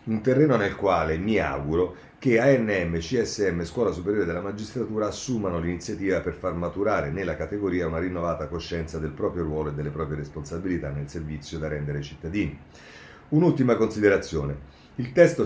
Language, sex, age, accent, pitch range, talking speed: Italian, male, 40-59, native, 80-100 Hz, 155 wpm